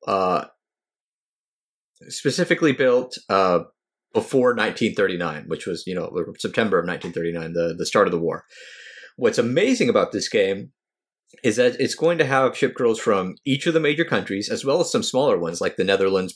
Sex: male